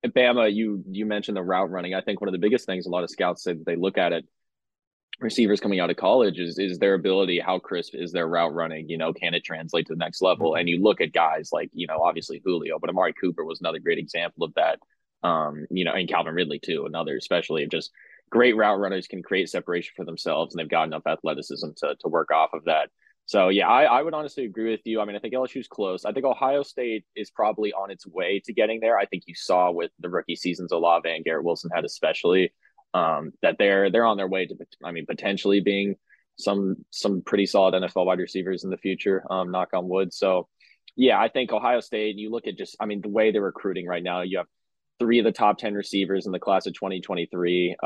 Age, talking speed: 20-39, 250 wpm